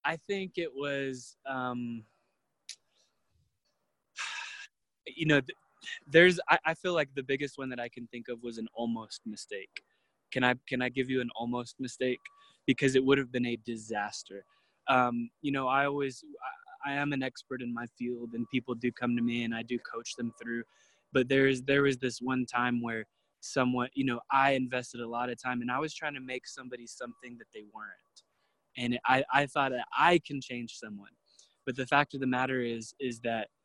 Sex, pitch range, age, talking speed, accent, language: male, 120-140 Hz, 20-39, 200 wpm, American, English